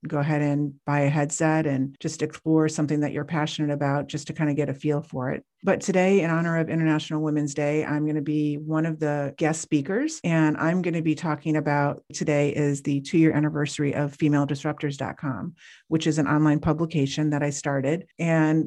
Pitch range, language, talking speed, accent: 145-160 Hz, English, 205 wpm, American